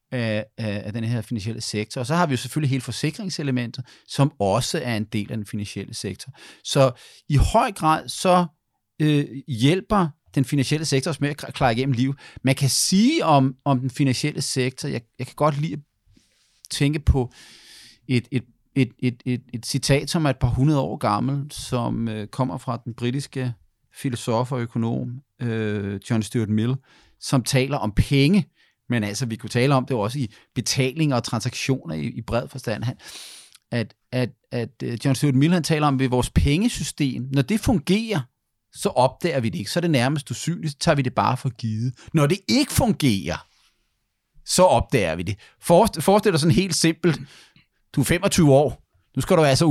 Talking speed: 190 wpm